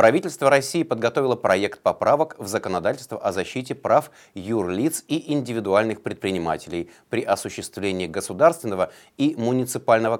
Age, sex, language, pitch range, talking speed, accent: 30-49, male, Russian, 100-145 Hz, 110 wpm, native